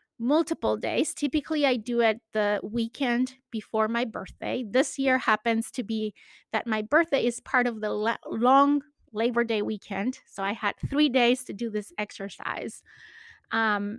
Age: 30-49